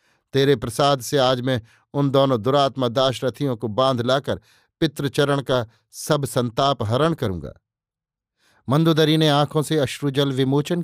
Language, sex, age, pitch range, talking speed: Hindi, male, 50-69, 130-155 Hz, 135 wpm